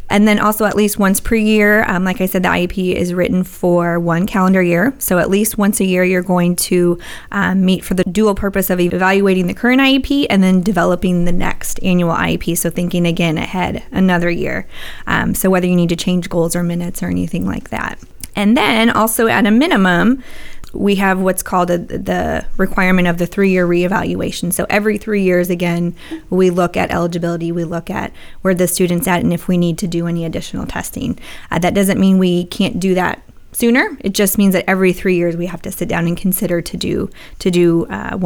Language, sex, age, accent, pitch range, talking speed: English, female, 20-39, American, 175-200 Hz, 215 wpm